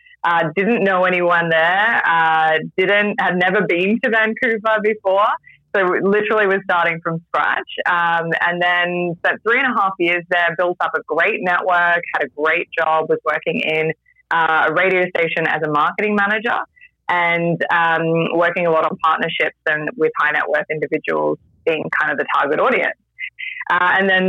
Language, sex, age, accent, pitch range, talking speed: English, female, 20-39, Australian, 165-210 Hz, 175 wpm